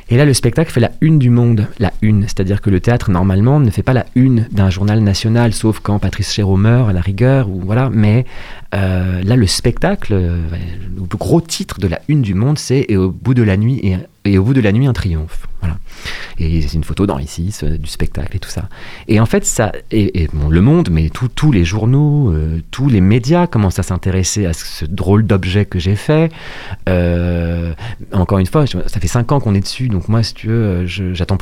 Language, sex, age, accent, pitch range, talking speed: French, male, 30-49, French, 90-125 Hz, 235 wpm